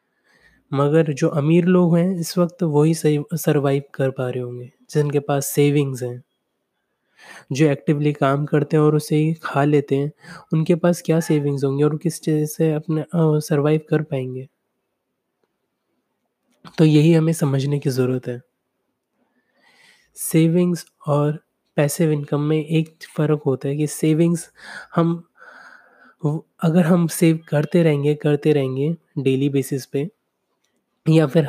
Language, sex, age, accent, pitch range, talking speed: Hindi, male, 20-39, native, 145-165 Hz, 140 wpm